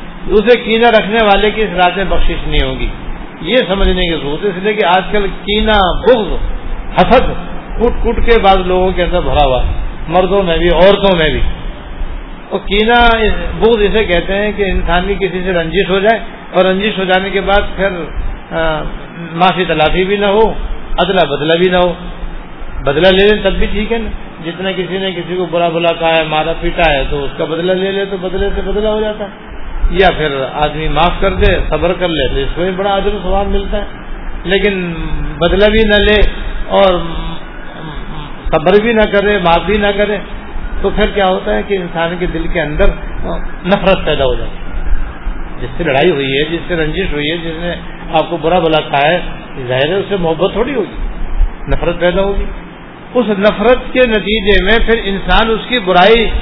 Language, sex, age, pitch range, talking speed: Urdu, male, 50-69, 170-205 Hz, 185 wpm